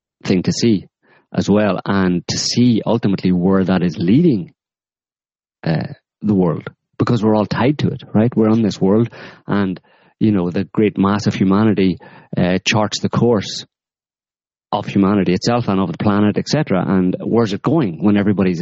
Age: 30-49